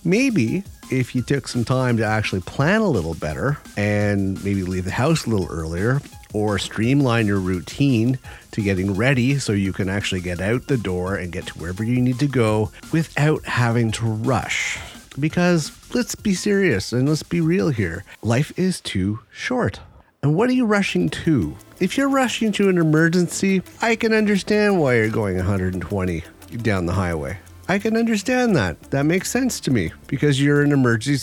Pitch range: 100-150 Hz